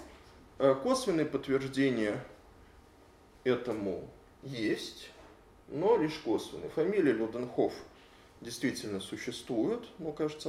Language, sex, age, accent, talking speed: Russian, male, 20-39, native, 75 wpm